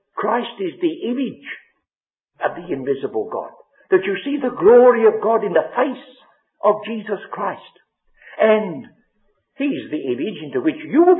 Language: English